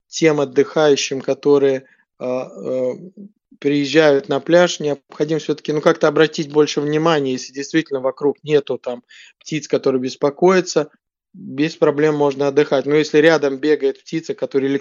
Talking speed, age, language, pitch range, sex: 135 wpm, 20-39, Russian, 140-160 Hz, male